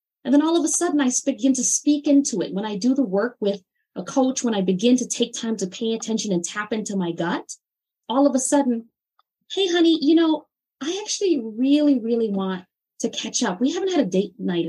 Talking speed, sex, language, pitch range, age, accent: 235 wpm, female, English, 190-280 Hz, 20-39, American